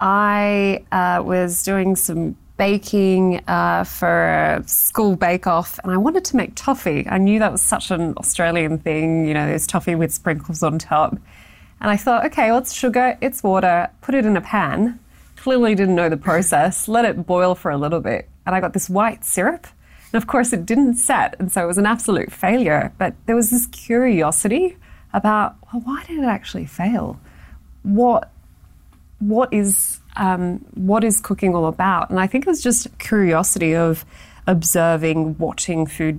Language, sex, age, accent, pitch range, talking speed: English, female, 20-39, Australian, 160-215 Hz, 180 wpm